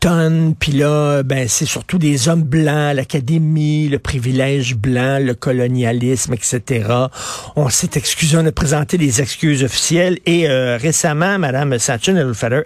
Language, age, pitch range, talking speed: French, 50-69, 130-165 Hz, 140 wpm